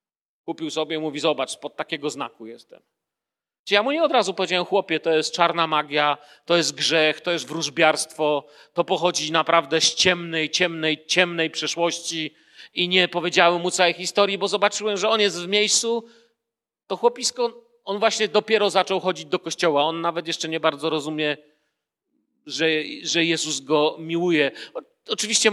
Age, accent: 40-59, native